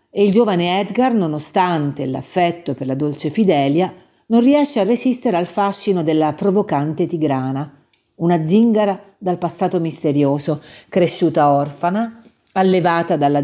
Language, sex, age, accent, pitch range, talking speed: Italian, female, 50-69, native, 155-225 Hz, 125 wpm